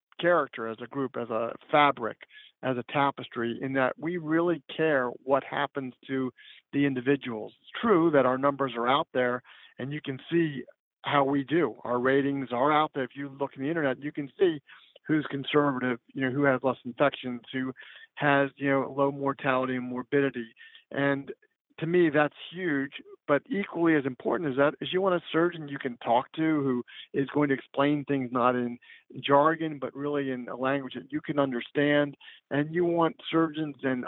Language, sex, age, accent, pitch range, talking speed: English, male, 50-69, American, 130-160 Hz, 190 wpm